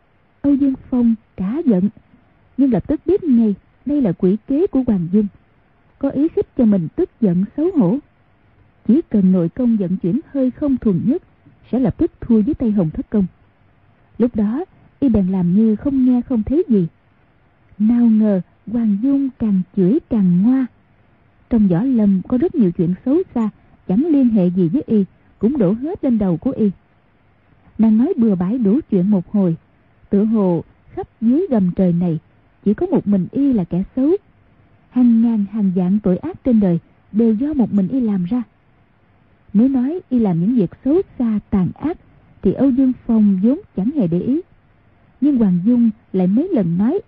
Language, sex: Vietnamese, female